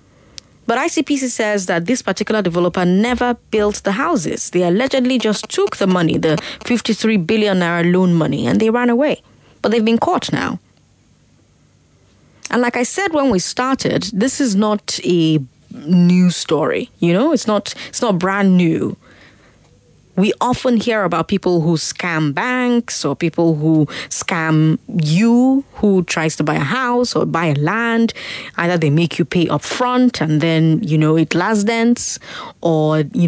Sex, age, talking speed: female, 20-39, 165 wpm